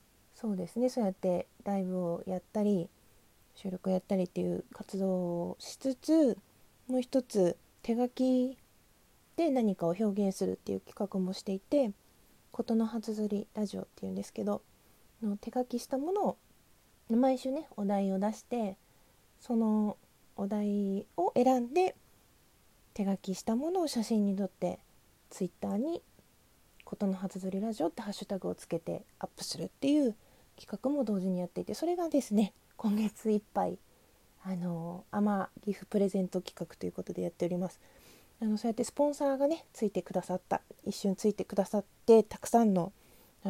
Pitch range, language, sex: 190-240 Hz, Japanese, female